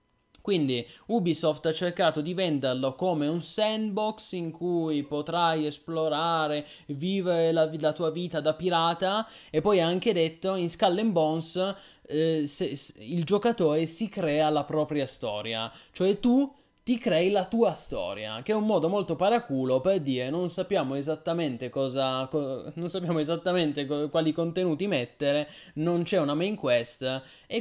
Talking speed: 145 wpm